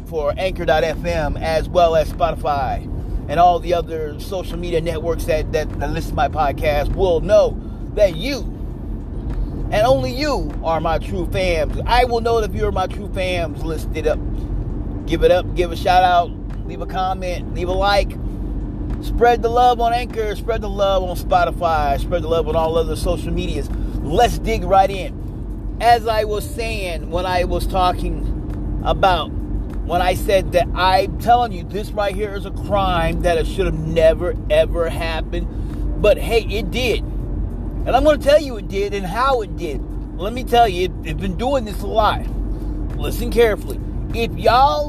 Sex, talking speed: male, 180 wpm